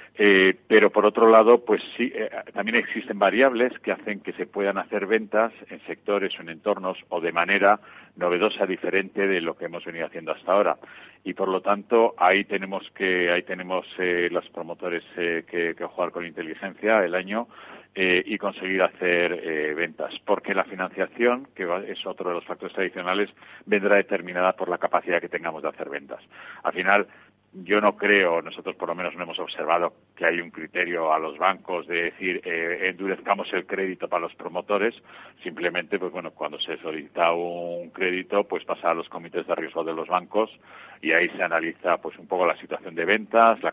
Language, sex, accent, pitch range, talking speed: Spanish, male, Spanish, 90-105 Hz, 190 wpm